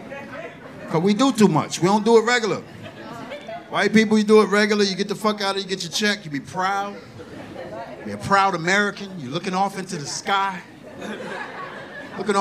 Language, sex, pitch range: English, male, 150-215 Hz